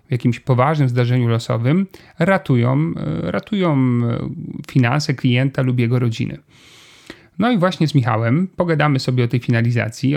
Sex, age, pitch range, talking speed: male, 40-59, 120-145 Hz, 130 wpm